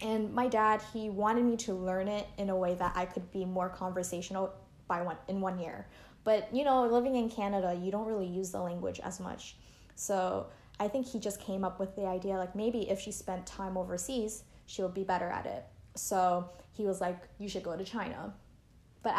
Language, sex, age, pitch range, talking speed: English, female, 10-29, 180-225 Hz, 220 wpm